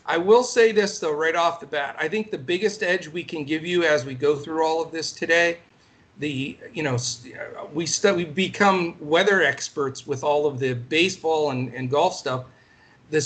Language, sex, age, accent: English, male, 40-59, American